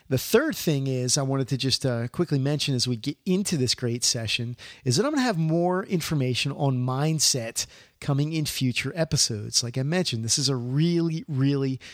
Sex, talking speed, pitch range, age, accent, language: male, 200 wpm, 125-150 Hz, 40-59, American, English